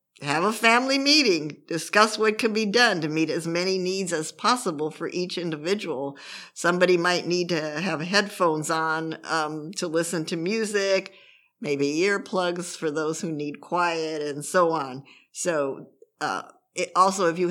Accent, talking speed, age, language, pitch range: American, 160 wpm, 50-69, English, 155-195 Hz